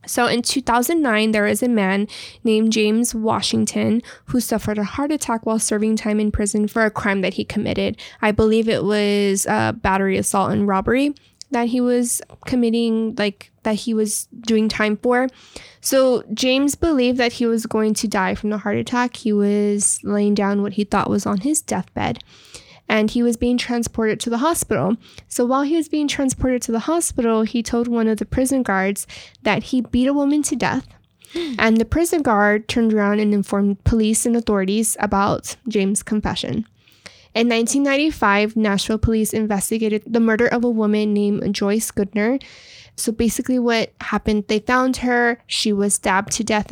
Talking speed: 180 wpm